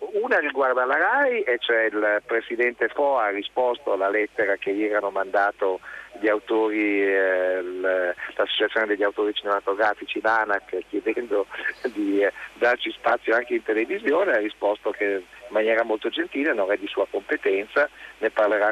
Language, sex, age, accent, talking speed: Italian, male, 40-59, native, 145 wpm